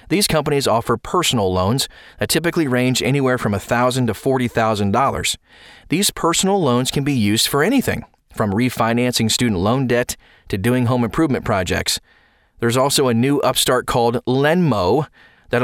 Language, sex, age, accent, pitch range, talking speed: English, male, 30-49, American, 110-145 Hz, 150 wpm